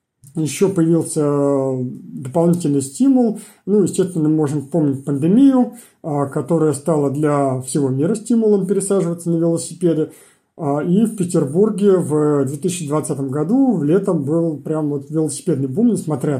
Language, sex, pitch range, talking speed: Russian, male, 150-190 Hz, 120 wpm